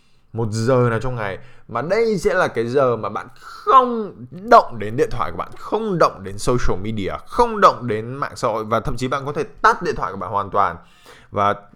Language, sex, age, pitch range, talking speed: Vietnamese, male, 20-39, 95-135 Hz, 230 wpm